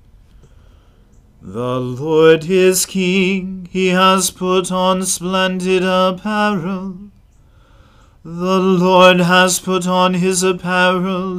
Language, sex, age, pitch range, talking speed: English, male, 40-59, 180-190 Hz, 90 wpm